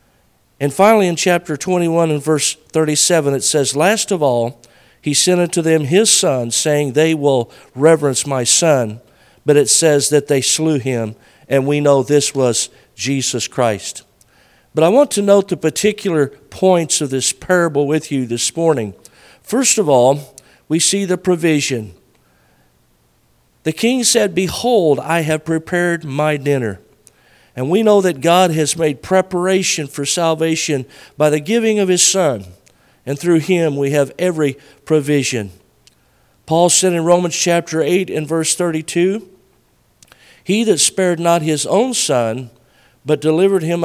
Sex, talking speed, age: male, 155 wpm, 50-69